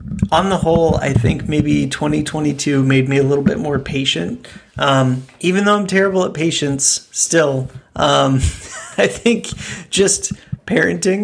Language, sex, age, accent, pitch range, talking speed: English, male, 30-49, American, 135-155 Hz, 145 wpm